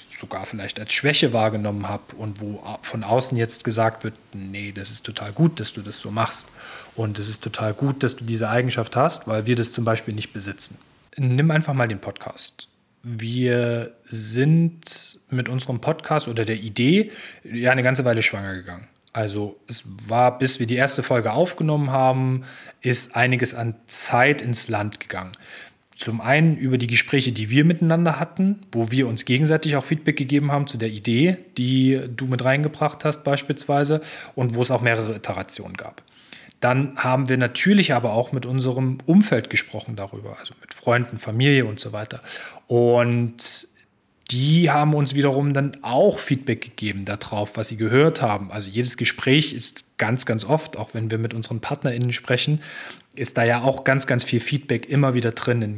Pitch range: 115-140 Hz